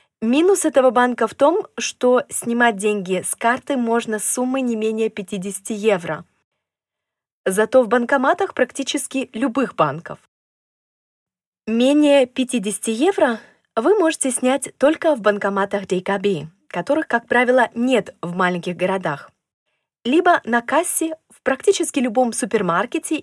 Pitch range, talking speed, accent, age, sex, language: 190-265 Hz, 120 wpm, native, 20-39, female, Russian